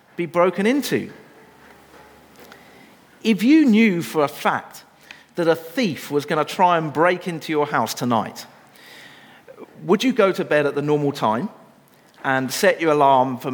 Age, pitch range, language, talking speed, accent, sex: 50-69, 150-225 Hz, English, 160 wpm, British, male